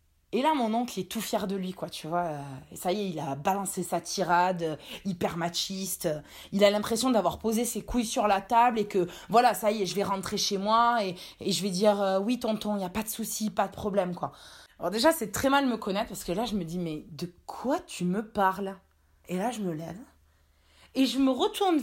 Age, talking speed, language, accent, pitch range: 20-39, 245 wpm, French, French, 185-250 Hz